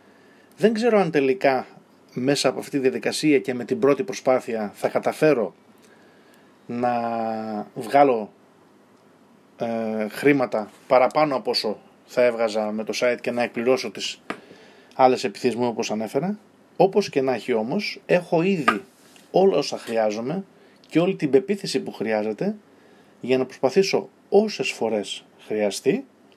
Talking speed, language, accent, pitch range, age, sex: 130 wpm, Greek, native, 120-155 Hz, 20-39, male